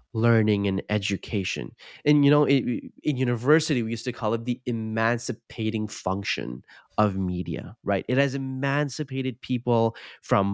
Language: English